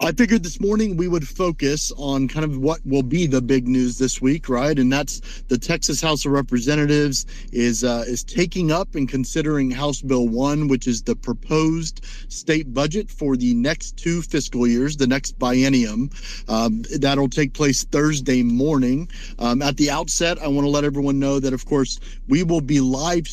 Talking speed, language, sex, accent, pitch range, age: 190 wpm, English, male, American, 130-155 Hz, 40-59